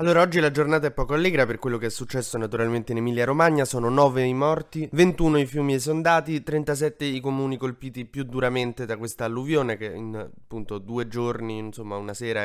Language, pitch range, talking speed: Italian, 115-145 Hz, 200 wpm